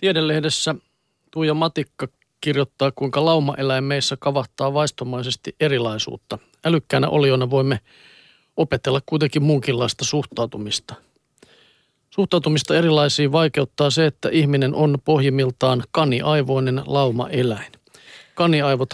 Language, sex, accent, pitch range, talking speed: Finnish, male, native, 130-150 Hz, 90 wpm